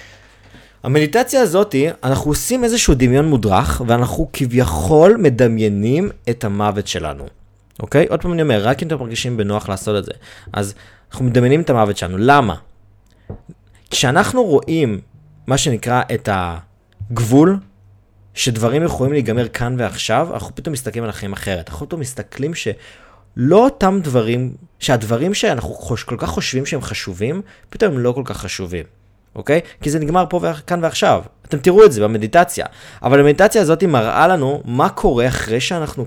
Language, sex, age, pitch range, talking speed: Hebrew, male, 20-39, 105-145 Hz, 155 wpm